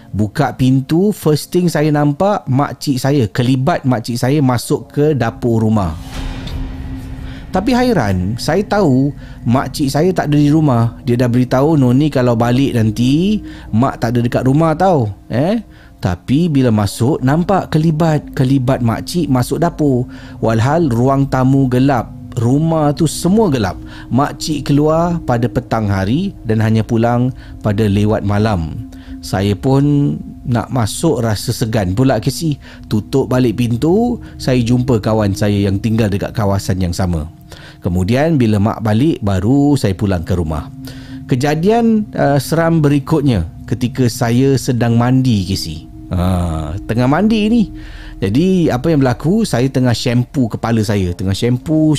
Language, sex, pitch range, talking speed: Malay, male, 110-145 Hz, 140 wpm